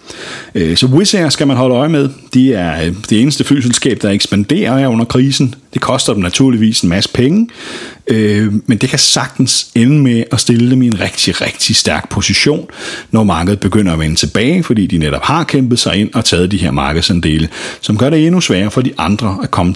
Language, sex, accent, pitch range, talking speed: Danish, male, native, 95-130 Hz, 200 wpm